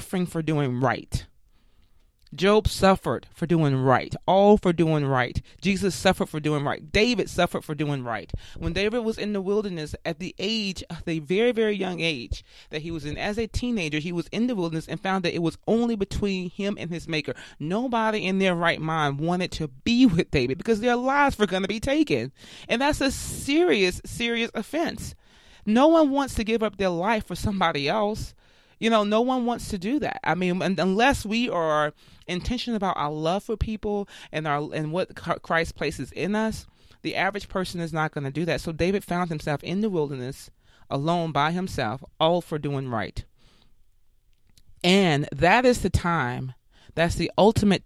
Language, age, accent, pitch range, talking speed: English, 30-49, American, 150-215 Hz, 190 wpm